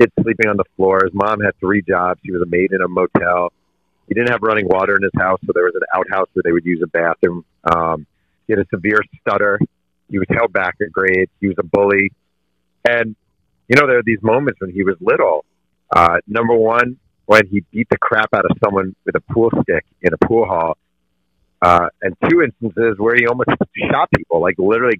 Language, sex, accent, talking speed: English, male, American, 220 wpm